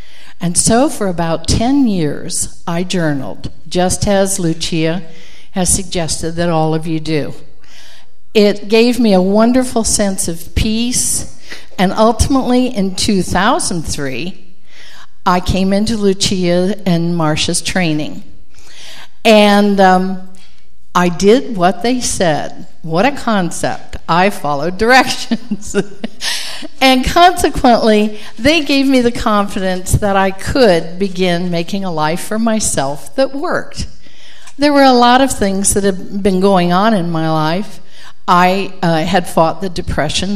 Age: 60-79